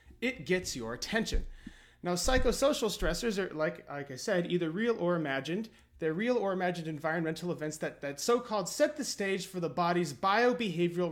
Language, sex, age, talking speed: English, male, 30-49, 175 wpm